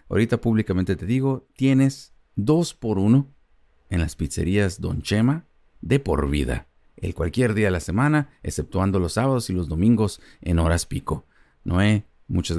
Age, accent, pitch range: 50-69, Mexican, 75-110 Hz